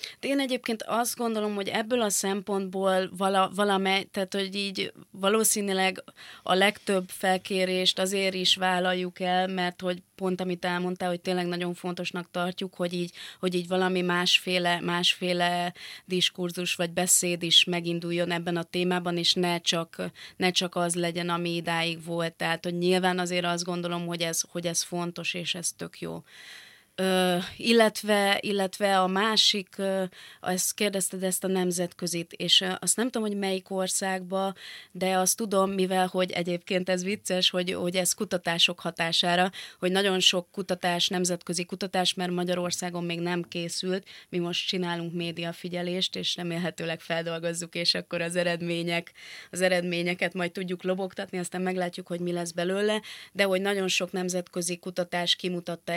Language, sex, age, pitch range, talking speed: Hungarian, female, 20-39, 175-190 Hz, 145 wpm